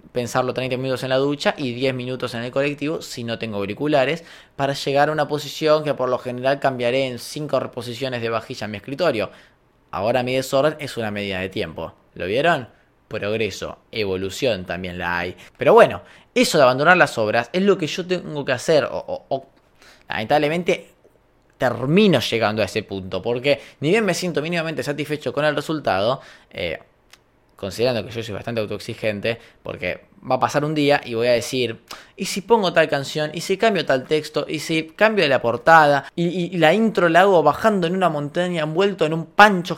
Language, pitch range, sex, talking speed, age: Spanish, 125-165 Hz, male, 195 wpm, 20-39